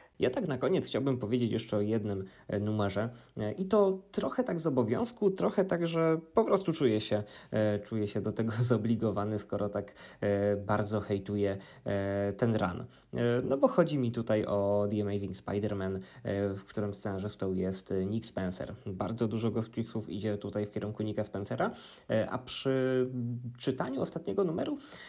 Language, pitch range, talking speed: Polish, 105-125 Hz, 150 wpm